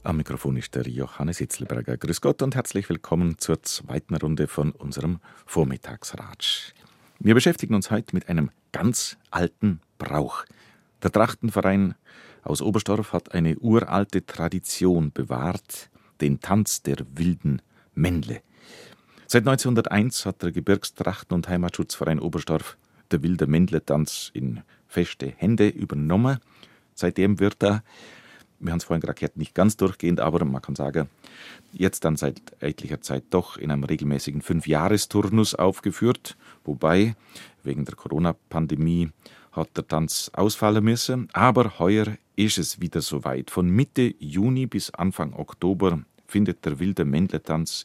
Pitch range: 75-105 Hz